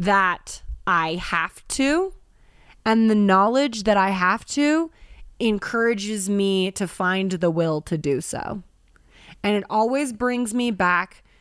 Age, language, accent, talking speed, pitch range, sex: 20-39, English, American, 135 wpm, 170-205 Hz, female